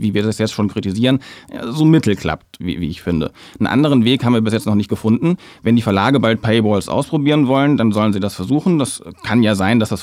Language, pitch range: English, 105-135 Hz